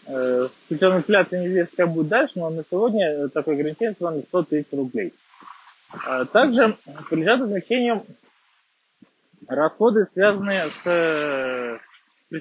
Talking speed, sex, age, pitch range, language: 90 wpm, male, 20-39, 145-185 Hz, Russian